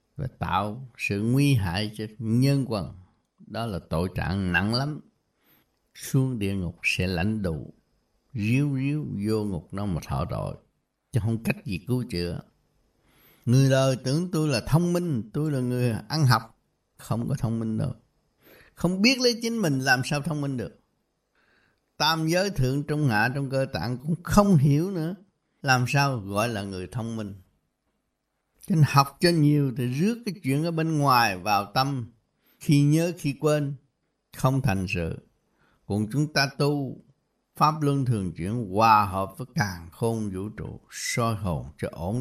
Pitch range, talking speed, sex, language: 105-145 Hz, 170 wpm, male, Croatian